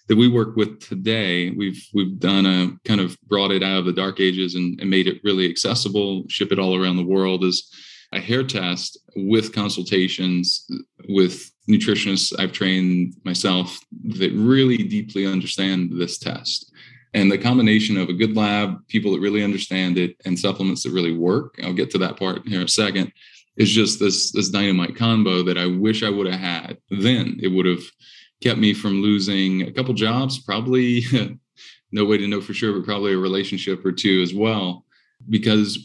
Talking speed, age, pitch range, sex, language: 190 wpm, 20-39, 95-110 Hz, male, English